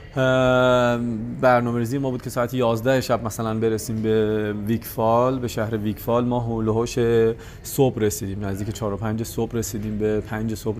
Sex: male